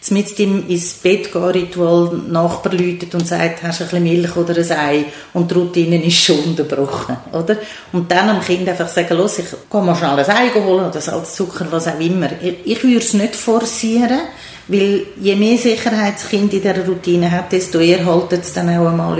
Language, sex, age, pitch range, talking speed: German, female, 40-59, 175-220 Hz, 205 wpm